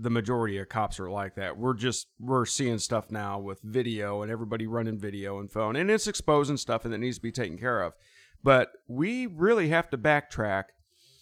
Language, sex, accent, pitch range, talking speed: English, male, American, 105-130 Hz, 210 wpm